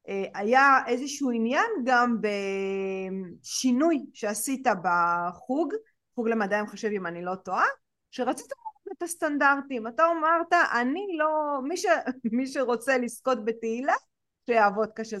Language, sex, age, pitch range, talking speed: Hebrew, female, 30-49, 220-315 Hz, 120 wpm